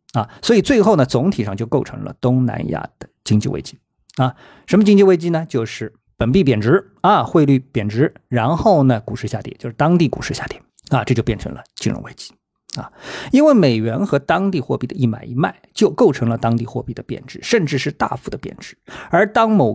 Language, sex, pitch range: Chinese, male, 115-150 Hz